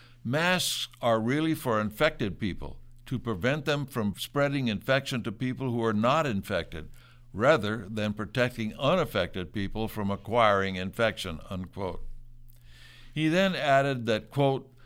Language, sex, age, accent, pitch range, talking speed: English, male, 60-79, American, 110-135 Hz, 130 wpm